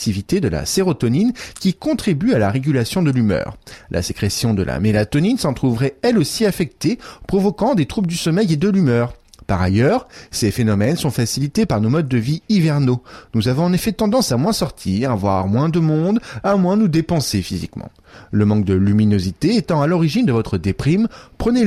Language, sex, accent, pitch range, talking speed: French, male, French, 105-175 Hz, 190 wpm